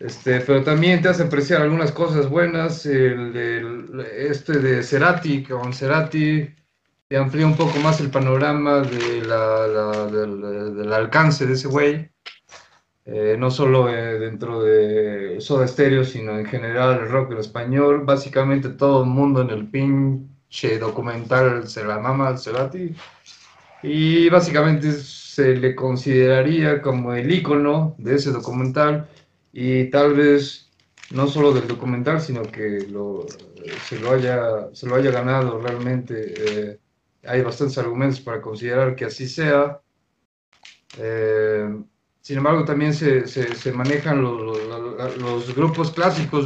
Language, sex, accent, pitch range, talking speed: Spanish, male, Mexican, 115-145 Hz, 145 wpm